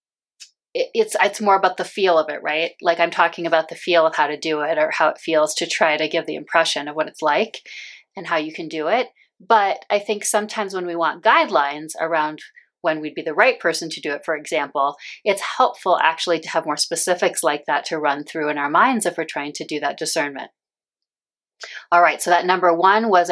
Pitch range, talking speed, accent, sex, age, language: 160-200 Hz, 230 wpm, American, female, 30-49, English